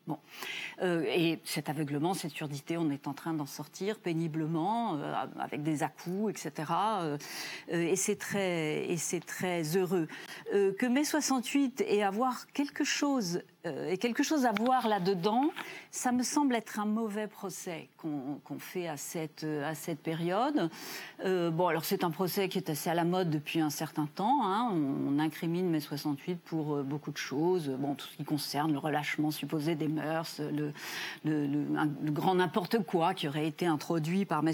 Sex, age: female, 40-59